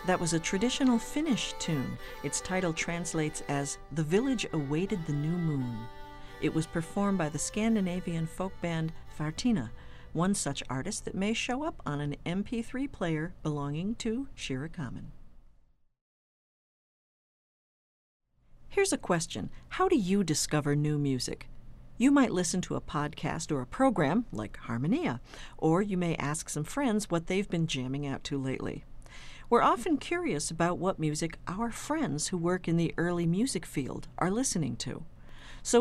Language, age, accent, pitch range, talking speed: English, 50-69, American, 145-200 Hz, 155 wpm